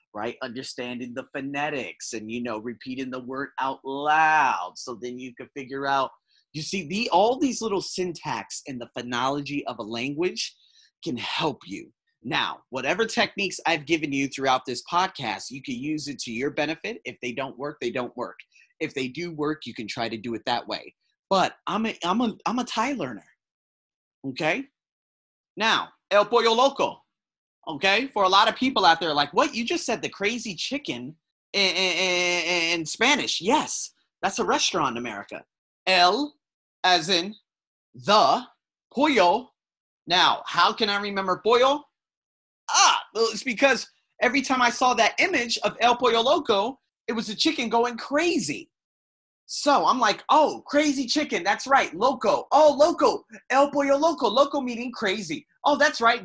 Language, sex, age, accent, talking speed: English, male, 30-49, American, 170 wpm